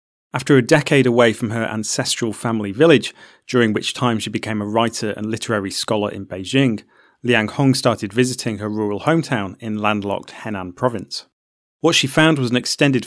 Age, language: 30-49, English